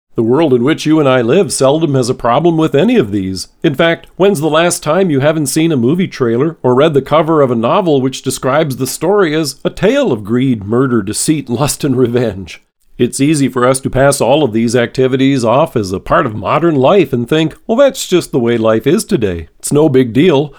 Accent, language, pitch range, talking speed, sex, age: American, English, 125-165 Hz, 235 wpm, male, 40-59